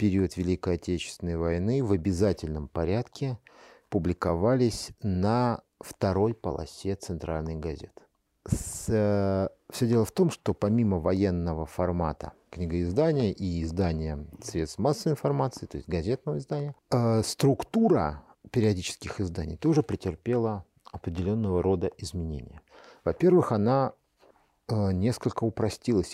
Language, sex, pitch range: Russian, male, 85-120 Hz